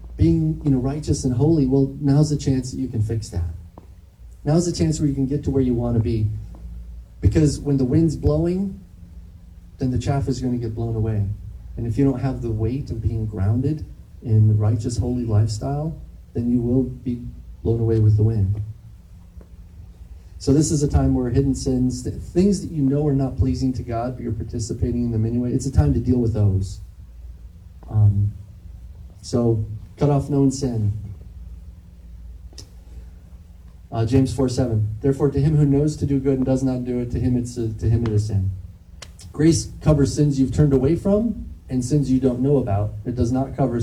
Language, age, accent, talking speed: English, 40-59, American, 195 wpm